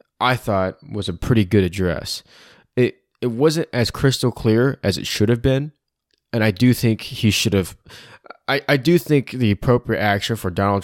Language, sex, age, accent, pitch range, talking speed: English, male, 20-39, American, 95-120 Hz, 190 wpm